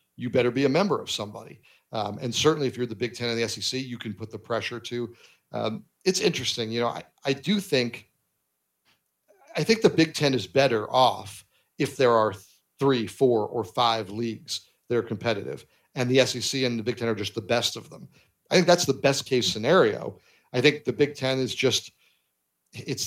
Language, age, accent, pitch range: English, 40-59, American, 115-140 Hz